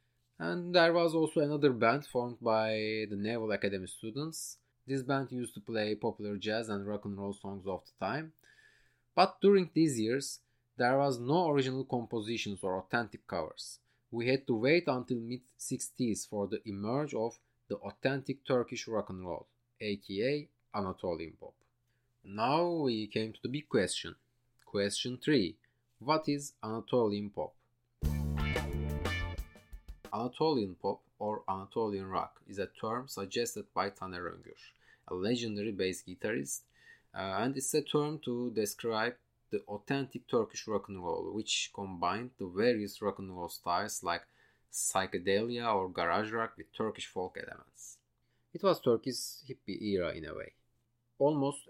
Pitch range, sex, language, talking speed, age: 100-130 Hz, male, Turkish, 145 wpm, 30-49